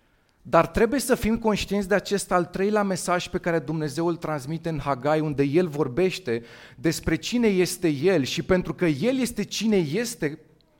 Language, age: Romanian, 30-49